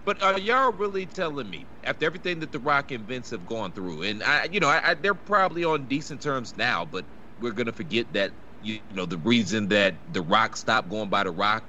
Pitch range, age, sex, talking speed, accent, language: 100-125 Hz, 30-49, male, 235 wpm, American, English